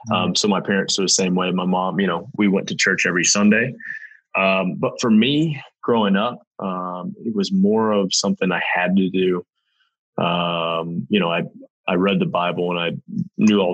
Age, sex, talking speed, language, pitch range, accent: 20-39, male, 200 wpm, English, 90-115 Hz, American